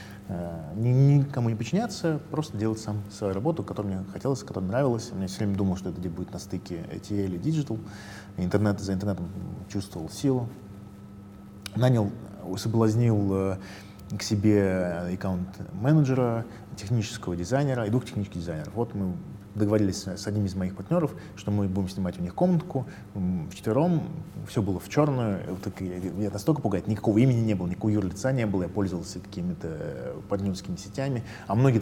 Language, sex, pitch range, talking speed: Russian, male, 95-115 Hz, 155 wpm